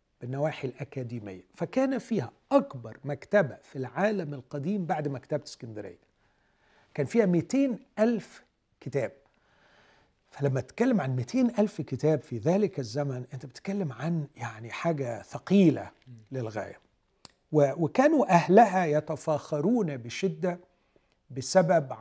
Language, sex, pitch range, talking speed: Arabic, male, 130-185 Hz, 105 wpm